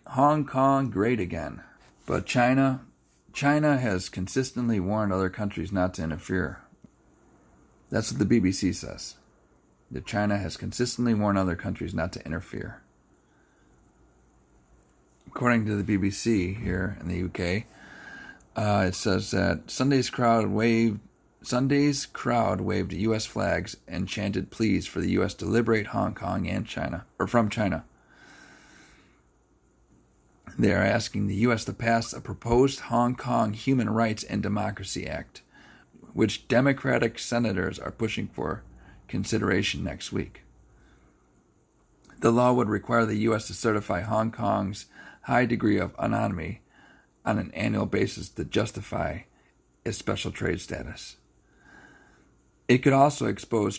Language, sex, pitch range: English, male, 90-115 Hz